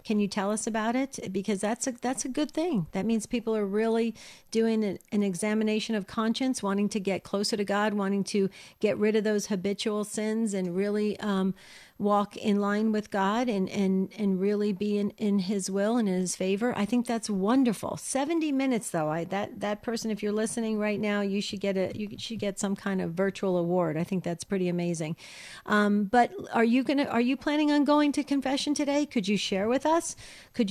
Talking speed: 215 wpm